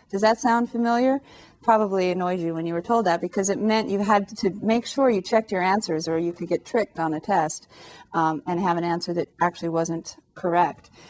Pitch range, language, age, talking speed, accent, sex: 175-230 Hz, English, 40-59, 220 wpm, American, female